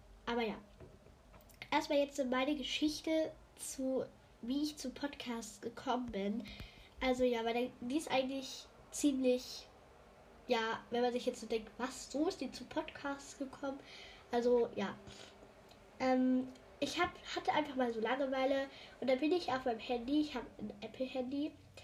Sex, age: female, 10-29